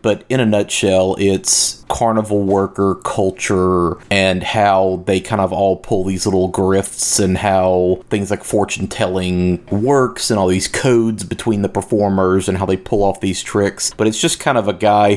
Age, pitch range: 30-49, 95-105 Hz